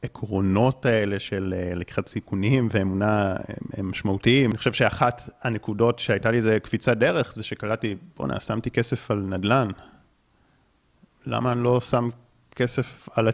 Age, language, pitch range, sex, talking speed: 30-49, Hebrew, 105-130 Hz, male, 135 wpm